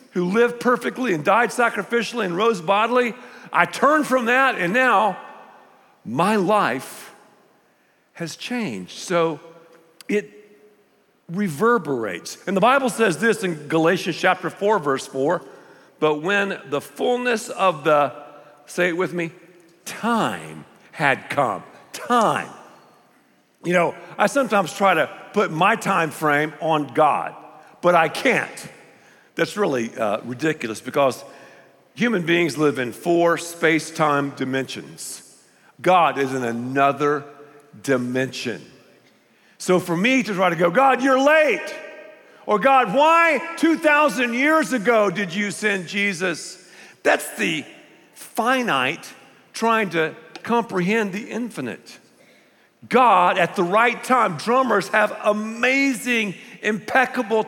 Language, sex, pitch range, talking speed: English, male, 160-235 Hz, 120 wpm